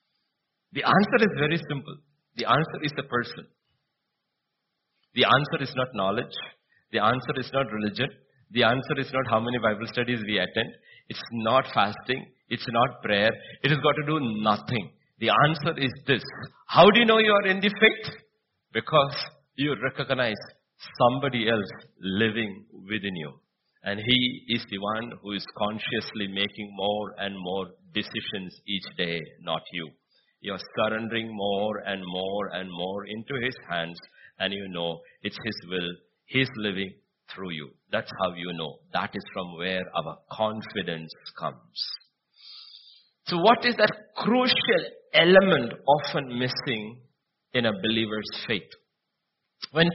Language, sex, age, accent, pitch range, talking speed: English, male, 50-69, Indian, 100-140 Hz, 150 wpm